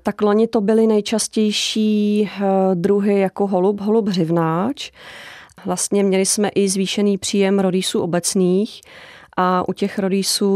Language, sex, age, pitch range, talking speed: Czech, female, 30-49, 180-200 Hz, 125 wpm